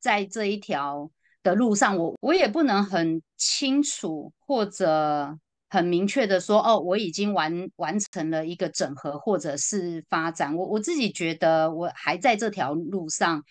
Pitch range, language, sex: 165-220 Hz, Chinese, female